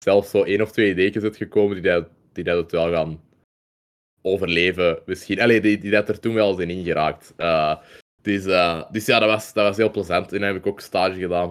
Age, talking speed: 20-39, 230 wpm